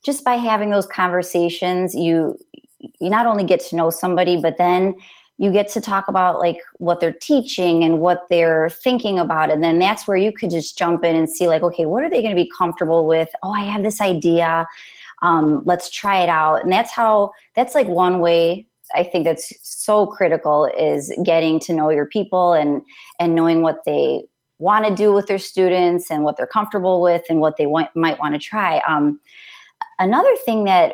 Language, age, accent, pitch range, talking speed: English, 20-39, American, 165-200 Hz, 200 wpm